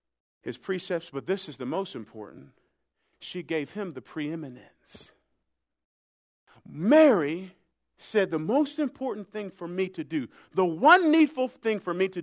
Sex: male